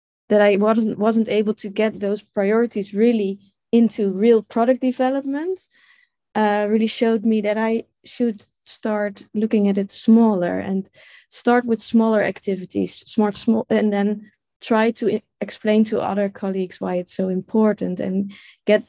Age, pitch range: 20-39, 205-245 Hz